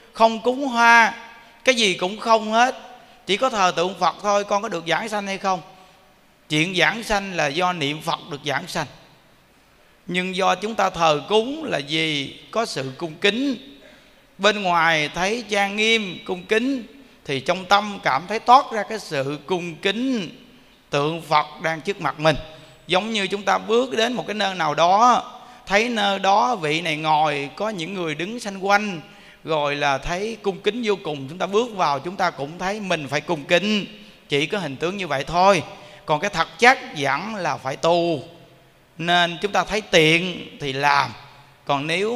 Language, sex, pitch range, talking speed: Vietnamese, male, 160-210 Hz, 190 wpm